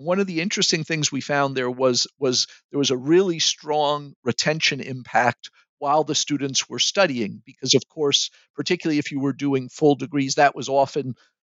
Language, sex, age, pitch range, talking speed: English, male, 50-69, 140-170 Hz, 180 wpm